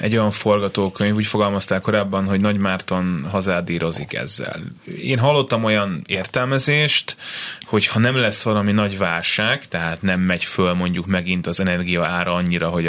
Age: 20-39